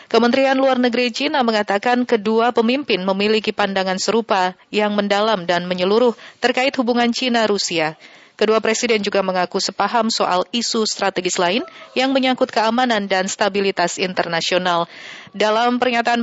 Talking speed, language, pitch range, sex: 125 wpm, Indonesian, 190-240 Hz, female